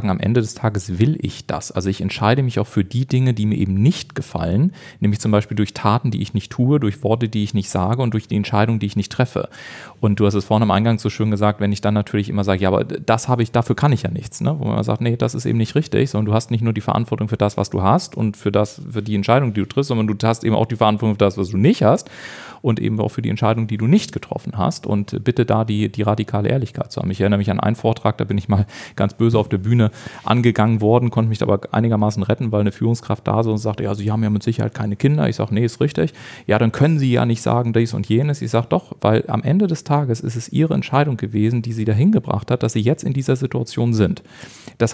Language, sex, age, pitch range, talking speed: German, male, 40-59, 105-125 Hz, 280 wpm